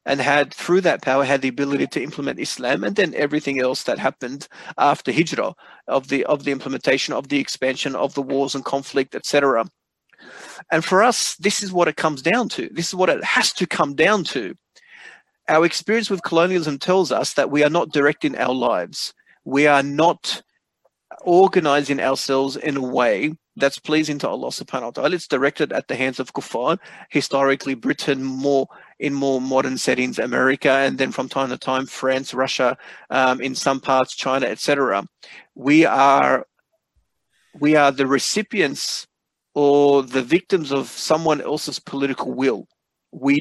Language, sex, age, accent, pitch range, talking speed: English, male, 40-59, Australian, 135-160 Hz, 170 wpm